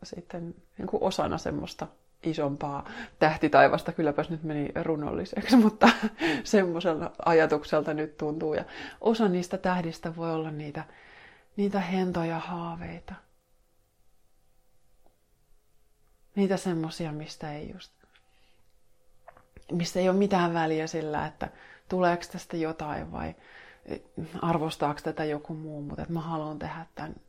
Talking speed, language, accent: 110 wpm, Finnish, native